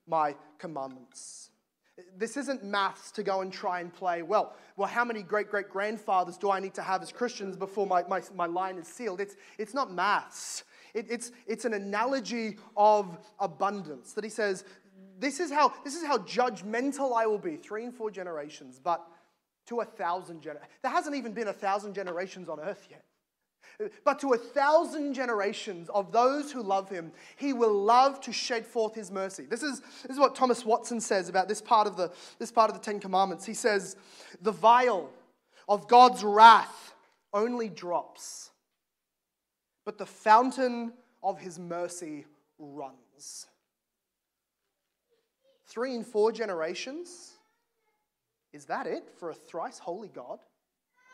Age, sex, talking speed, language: 30-49, male, 160 wpm, English